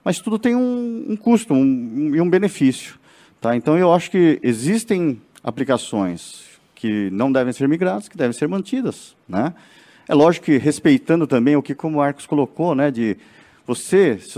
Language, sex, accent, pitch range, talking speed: Portuguese, male, Brazilian, 105-160 Hz, 165 wpm